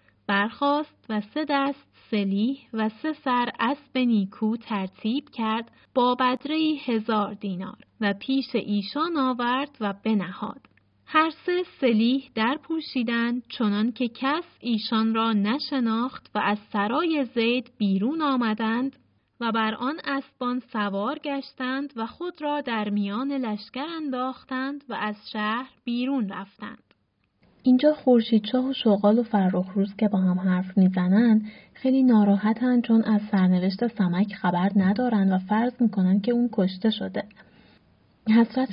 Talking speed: 130 wpm